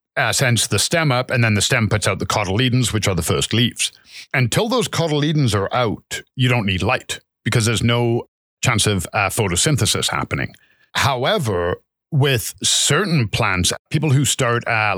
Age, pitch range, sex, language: 50-69, 105-135 Hz, male, English